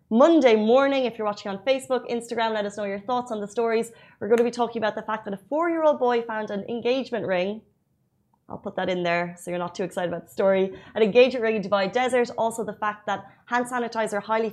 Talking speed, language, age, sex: 245 wpm, Arabic, 20-39, female